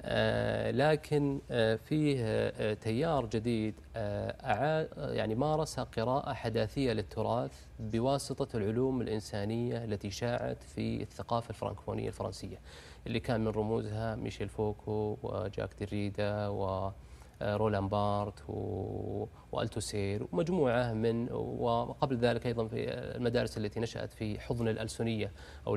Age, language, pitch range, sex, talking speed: 30-49, Arabic, 105-130 Hz, male, 105 wpm